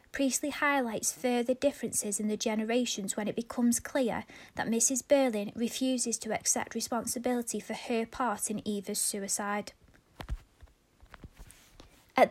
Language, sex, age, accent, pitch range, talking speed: English, female, 20-39, British, 210-250 Hz, 120 wpm